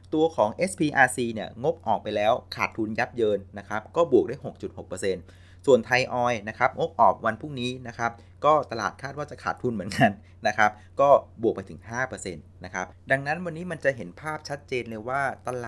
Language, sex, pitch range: Thai, male, 95-130 Hz